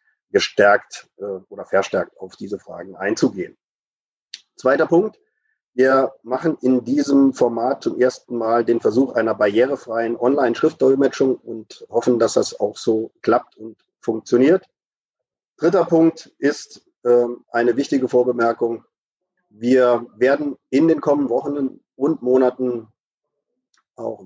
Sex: male